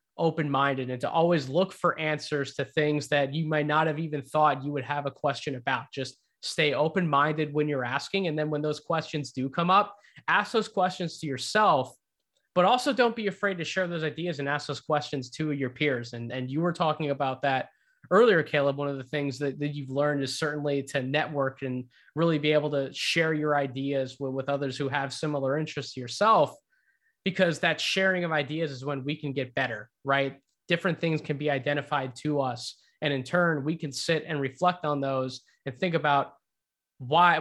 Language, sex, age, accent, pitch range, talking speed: English, male, 20-39, American, 140-165 Hz, 205 wpm